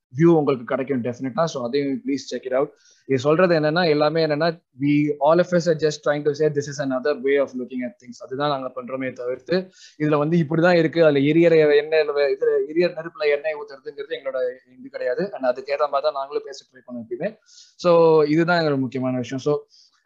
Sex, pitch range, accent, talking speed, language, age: male, 135-170 Hz, native, 110 wpm, Tamil, 20-39